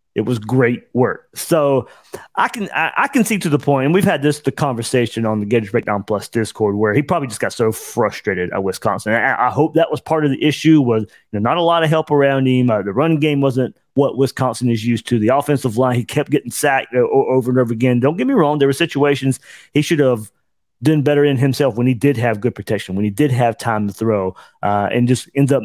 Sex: male